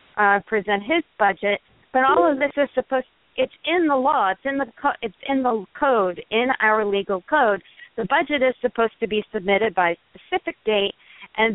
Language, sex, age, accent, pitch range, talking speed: English, female, 50-69, American, 220-275 Hz, 205 wpm